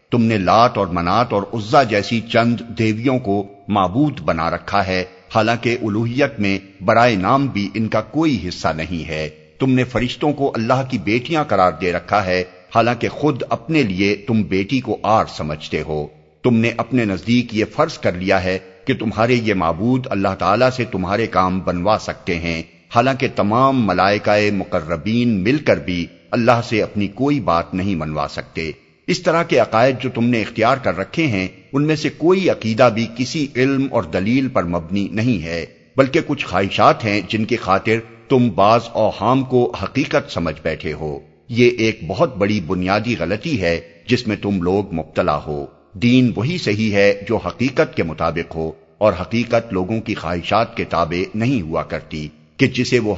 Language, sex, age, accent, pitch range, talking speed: English, male, 50-69, Indian, 90-125 Hz, 175 wpm